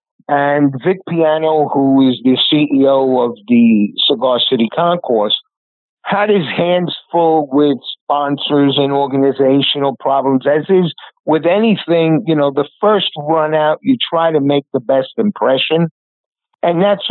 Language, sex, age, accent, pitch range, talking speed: English, male, 50-69, American, 135-165 Hz, 140 wpm